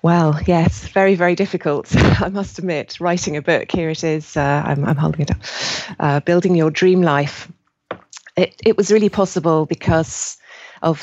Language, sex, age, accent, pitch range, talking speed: English, female, 30-49, British, 150-175 Hz, 175 wpm